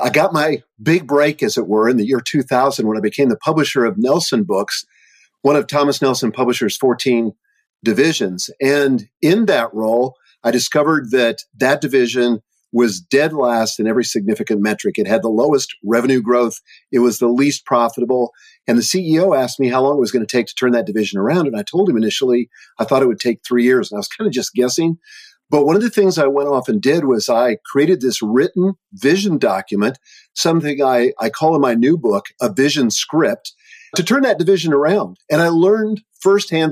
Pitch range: 120-155 Hz